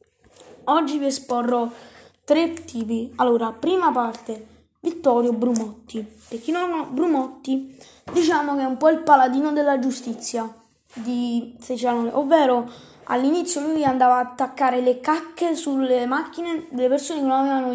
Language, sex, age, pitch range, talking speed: Italian, female, 20-39, 235-300 Hz, 140 wpm